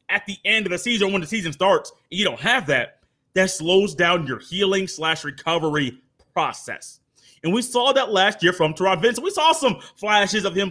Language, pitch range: English, 145-195 Hz